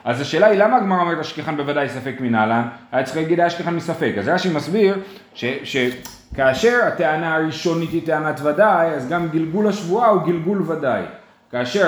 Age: 30-49